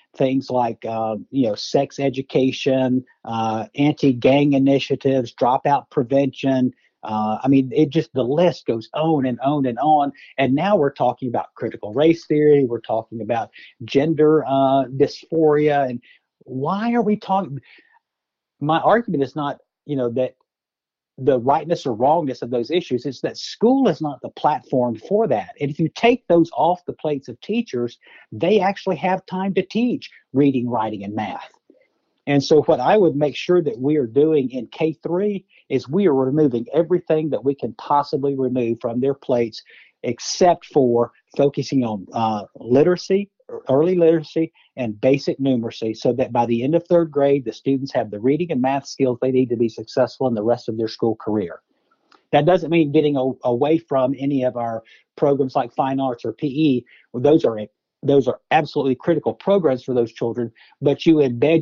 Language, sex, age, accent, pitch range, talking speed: English, male, 50-69, American, 120-155 Hz, 175 wpm